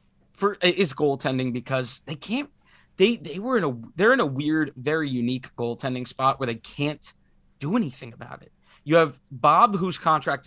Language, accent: English, American